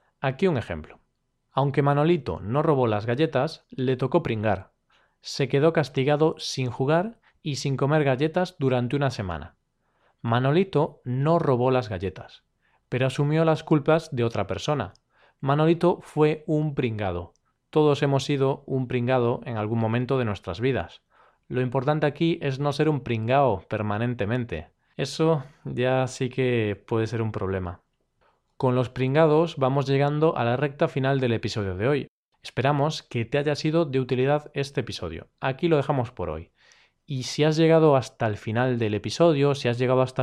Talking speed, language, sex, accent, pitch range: 160 wpm, Spanish, male, Spanish, 120-150 Hz